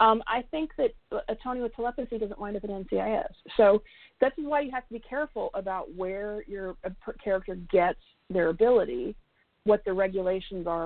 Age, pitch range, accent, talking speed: 40-59, 200-245 Hz, American, 175 wpm